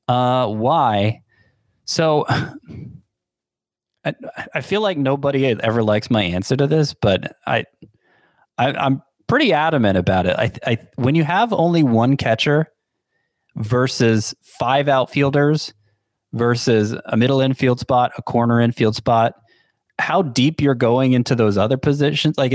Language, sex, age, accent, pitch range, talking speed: English, male, 30-49, American, 110-145 Hz, 135 wpm